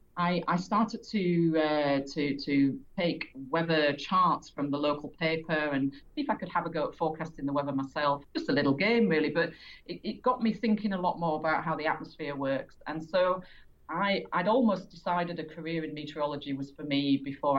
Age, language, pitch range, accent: 40-59, English, 140-170 Hz, British